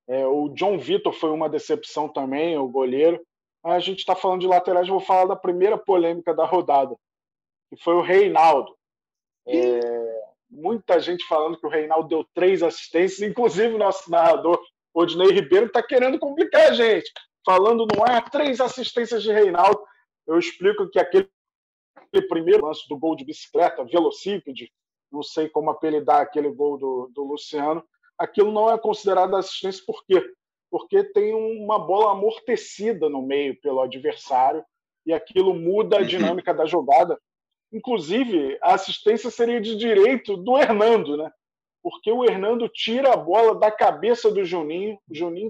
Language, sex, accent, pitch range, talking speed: Portuguese, male, Brazilian, 160-240 Hz, 155 wpm